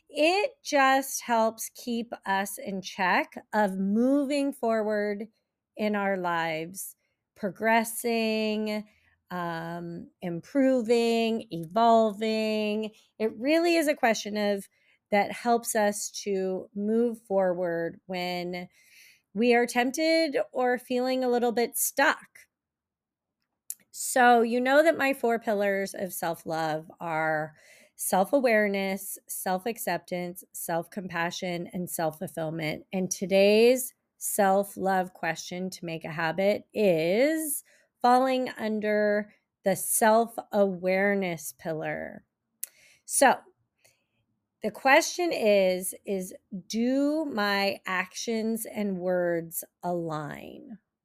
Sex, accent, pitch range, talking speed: female, American, 180-235 Hz, 95 wpm